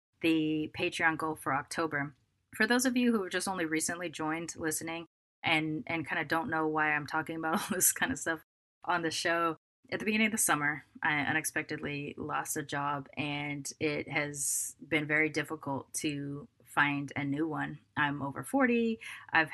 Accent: American